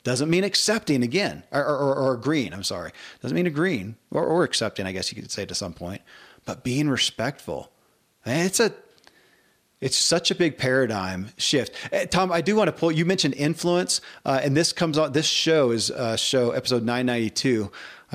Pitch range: 115-140 Hz